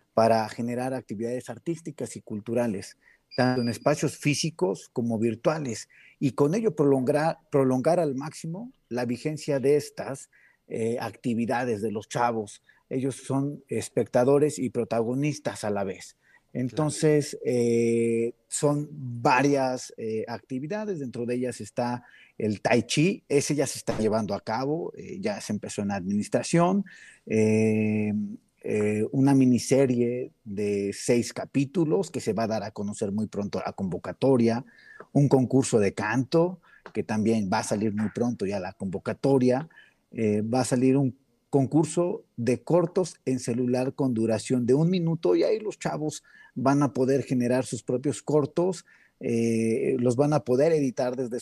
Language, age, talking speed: Spanish, 40-59, 150 wpm